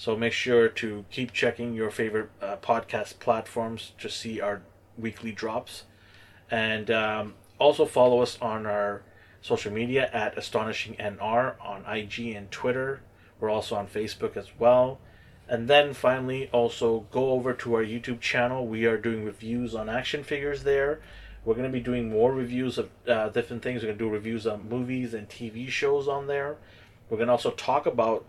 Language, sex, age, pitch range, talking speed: English, male, 30-49, 110-120 Hz, 180 wpm